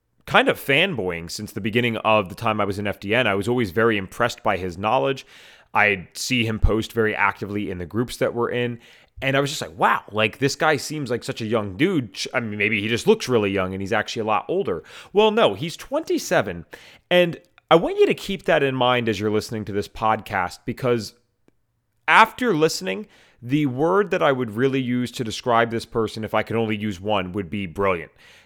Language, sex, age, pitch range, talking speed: English, male, 30-49, 110-145 Hz, 220 wpm